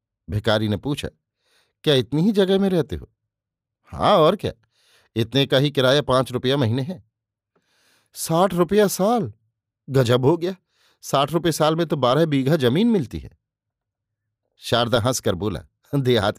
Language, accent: Hindi, native